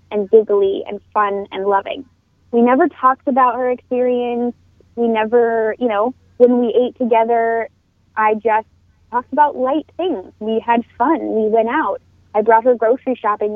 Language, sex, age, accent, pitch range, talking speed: English, female, 20-39, American, 215-250 Hz, 165 wpm